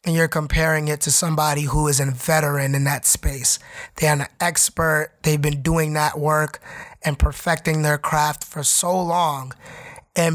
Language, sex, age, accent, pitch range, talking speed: English, male, 20-39, American, 150-170 Hz, 170 wpm